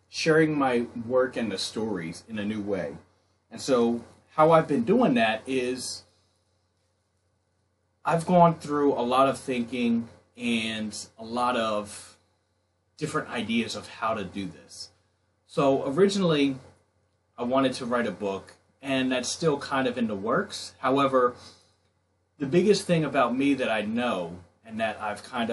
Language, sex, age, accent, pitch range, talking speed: English, male, 30-49, American, 105-135 Hz, 155 wpm